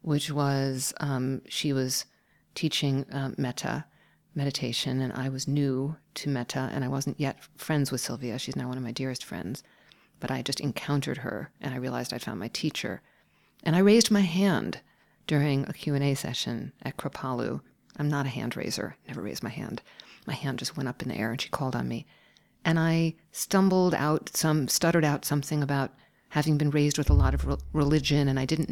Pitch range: 135-170 Hz